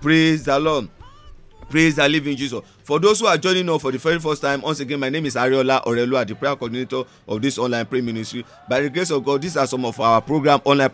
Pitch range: 125-155 Hz